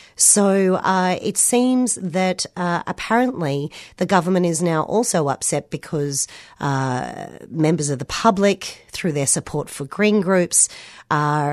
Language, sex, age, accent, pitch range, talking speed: English, female, 40-59, Australian, 145-185 Hz, 135 wpm